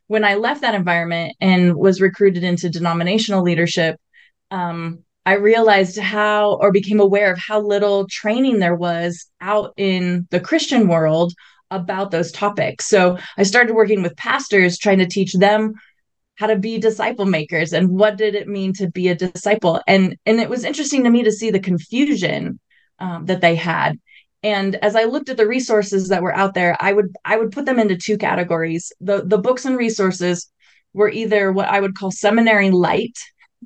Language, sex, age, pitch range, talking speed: English, female, 20-39, 180-215 Hz, 185 wpm